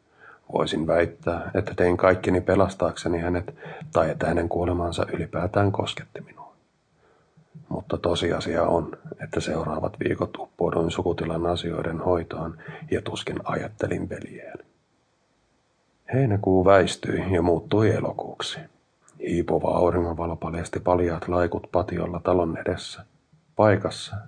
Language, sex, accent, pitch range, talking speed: Finnish, male, native, 85-95 Hz, 105 wpm